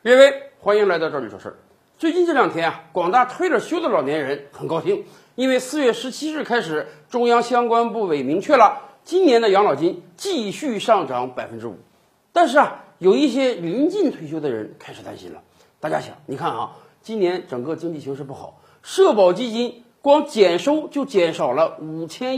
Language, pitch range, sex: Chinese, 195-300 Hz, male